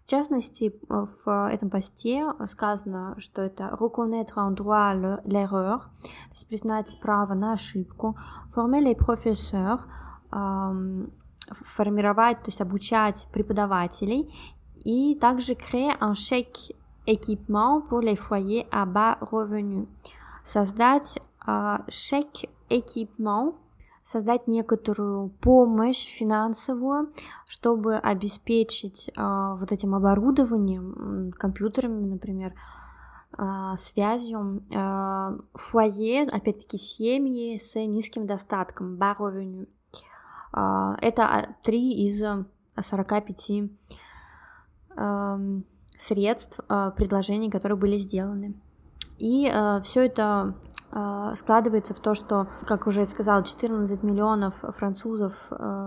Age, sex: 20-39, female